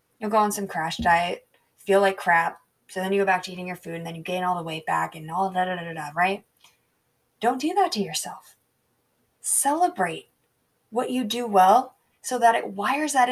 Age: 20-39